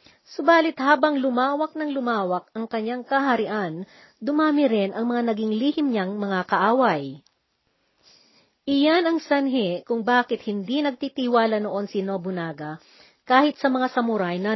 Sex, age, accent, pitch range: female, 40-59, native, 200-275 Hz